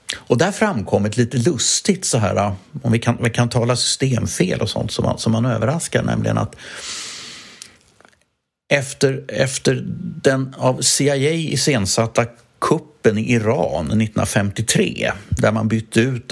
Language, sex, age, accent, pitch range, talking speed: English, male, 50-69, Swedish, 105-130 Hz, 130 wpm